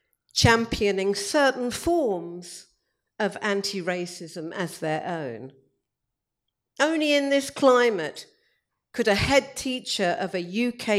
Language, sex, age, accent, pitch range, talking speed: English, female, 50-69, British, 170-255 Hz, 105 wpm